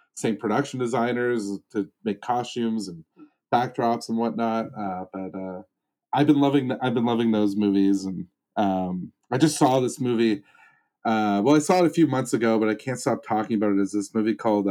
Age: 30-49